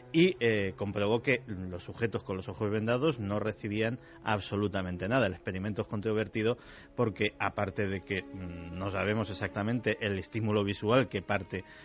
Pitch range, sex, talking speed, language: 100-130 Hz, male, 155 wpm, Spanish